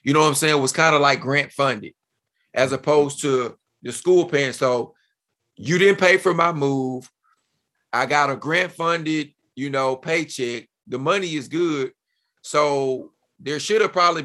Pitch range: 130-155 Hz